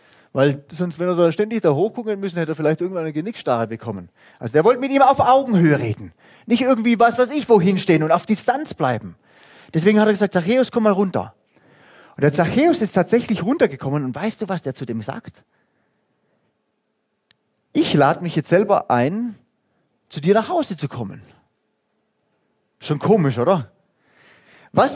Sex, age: male, 30-49